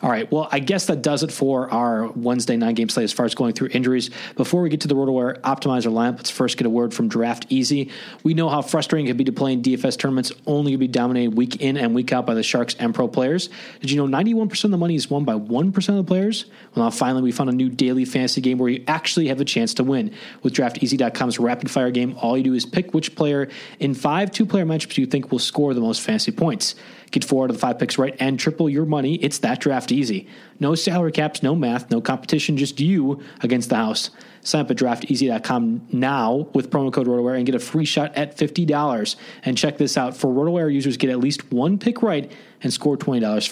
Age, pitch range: 30-49, 125-160 Hz